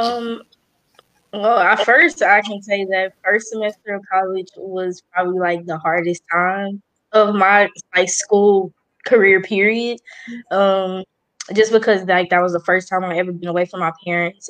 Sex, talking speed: female, 165 wpm